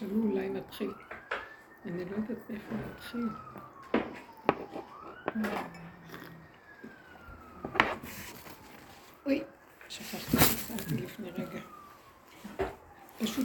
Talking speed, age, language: 60 wpm, 60-79, Hebrew